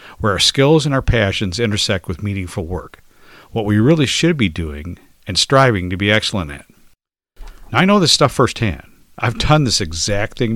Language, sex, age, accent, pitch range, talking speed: English, male, 50-69, American, 95-140 Hz, 190 wpm